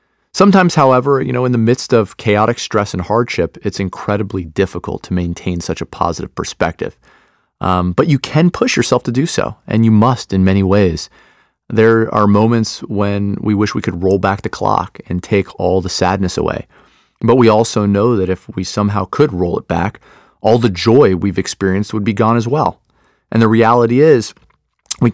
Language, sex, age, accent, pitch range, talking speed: English, male, 30-49, American, 95-115 Hz, 195 wpm